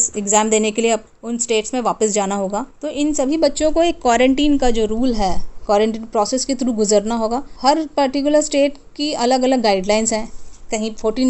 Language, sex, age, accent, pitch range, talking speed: Hindi, female, 20-39, native, 220-270 Hz, 190 wpm